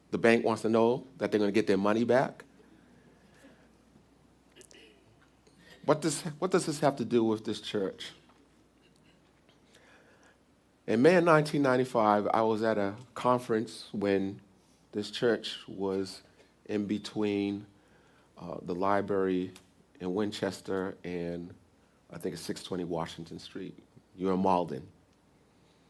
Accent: American